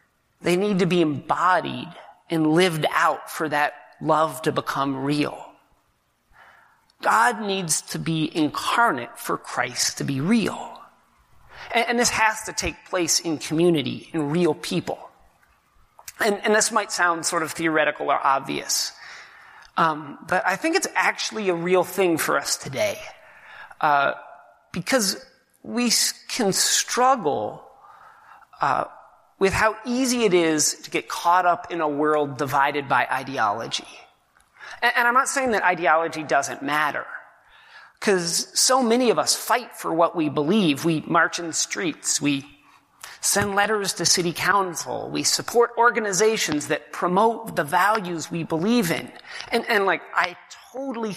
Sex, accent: male, American